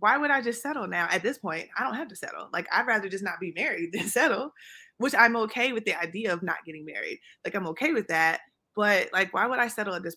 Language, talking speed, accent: English, 270 wpm, American